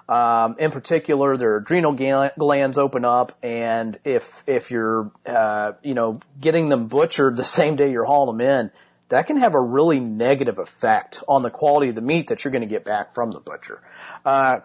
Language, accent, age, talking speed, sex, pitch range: English, American, 40-59, 195 wpm, male, 120-150 Hz